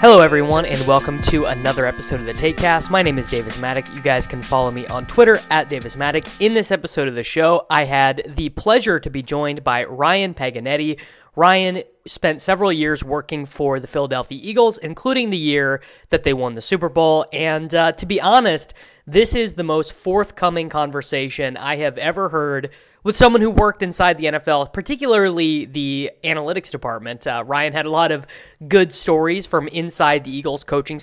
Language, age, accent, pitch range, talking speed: English, 20-39, American, 135-170 Hz, 190 wpm